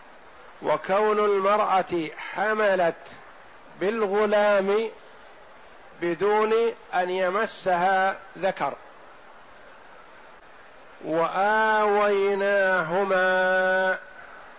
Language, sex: Arabic, male